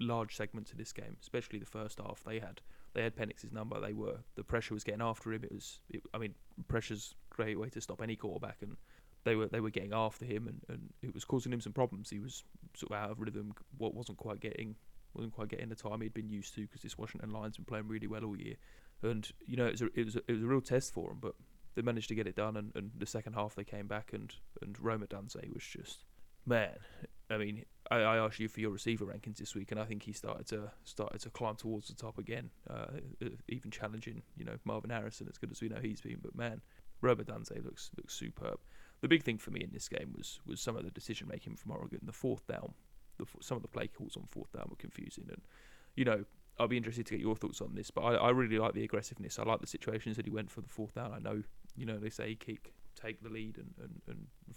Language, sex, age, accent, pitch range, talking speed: English, male, 20-39, British, 105-115 Hz, 265 wpm